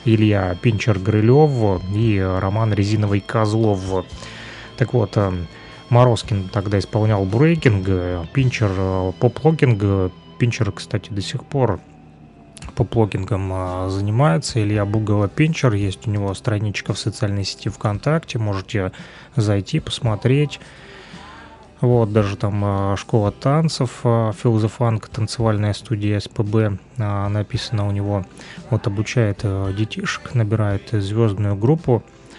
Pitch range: 100-120 Hz